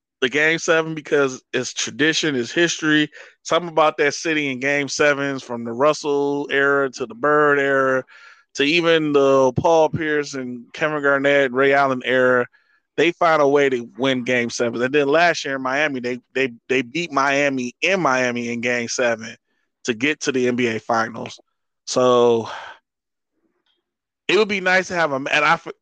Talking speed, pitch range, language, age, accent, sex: 175 wpm, 125-150 Hz, English, 20-39, American, male